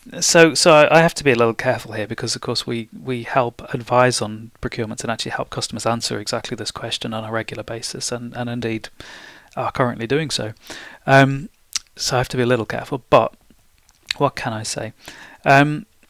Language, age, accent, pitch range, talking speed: English, 30-49, British, 115-135 Hz, 200 wpm